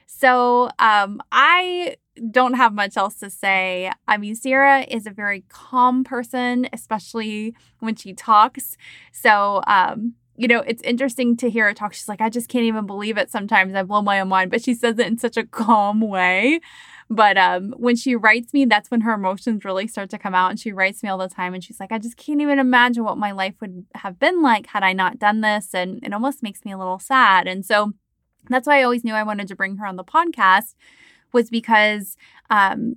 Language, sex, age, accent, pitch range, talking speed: English, female, 20-39, American, 195-245 Hz, 220 wpm